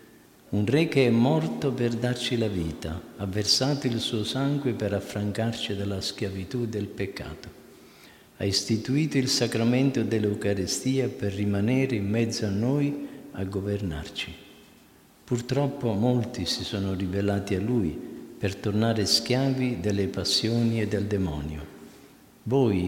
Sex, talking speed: male, 130 wpm